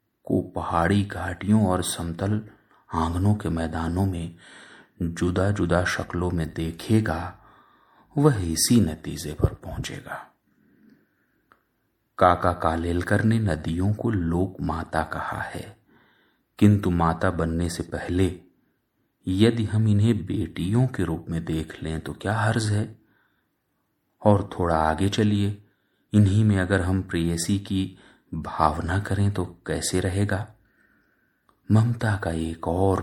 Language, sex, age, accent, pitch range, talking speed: Hindi, male, 30-49, native, 85-105 Hz, 120 wpm